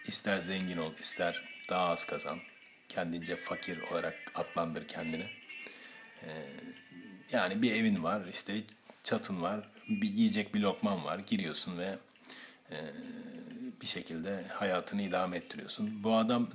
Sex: male